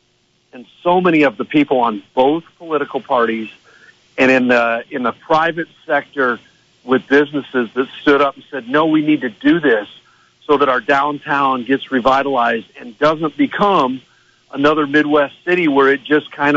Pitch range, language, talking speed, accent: 130-150 Hz, English, 165 wpm, American